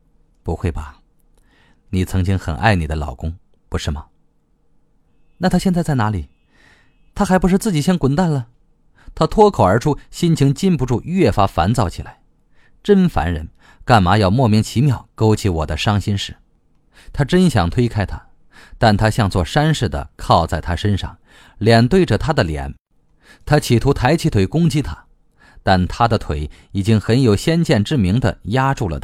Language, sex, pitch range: Chinese, male, 85-140 Hz